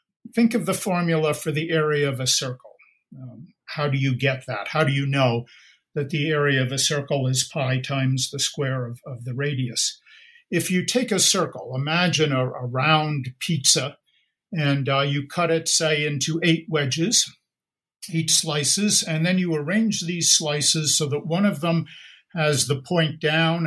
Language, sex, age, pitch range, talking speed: English, male, 50-69, 140-170 Hz, 180 wpm